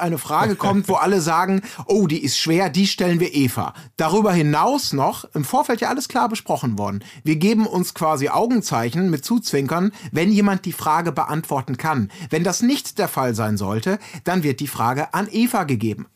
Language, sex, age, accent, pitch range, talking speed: German, male, 30-49, German, 145-210 Hz, 190 wpm